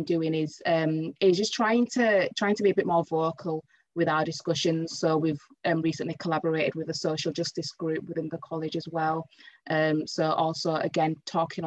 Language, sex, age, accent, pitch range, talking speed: English, female, 20-39, British, 160-185 Hz, 190 wpm